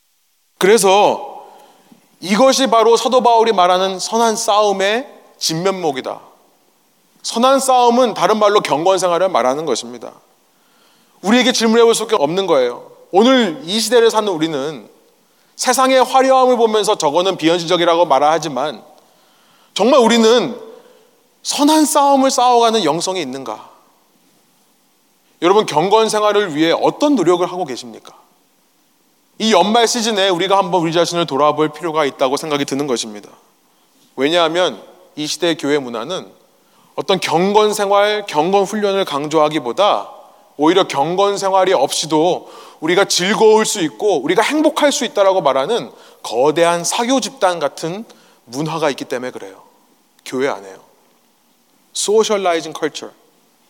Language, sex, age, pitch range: Korean, male, 30-49, 175-245 Hz